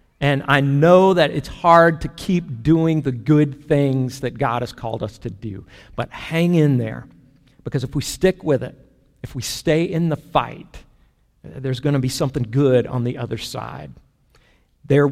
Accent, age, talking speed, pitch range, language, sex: American, 50-69, 185 wpm, 125-160 Hz, English, male